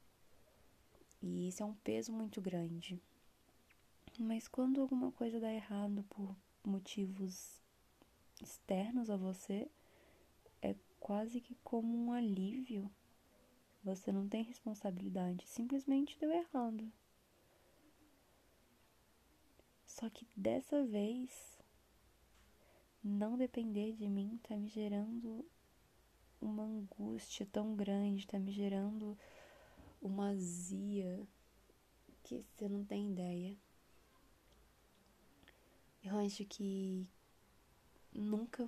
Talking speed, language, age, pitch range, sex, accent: 95 wpm, Portuguese, 20-39, 195-225 Hz, female, Brazilian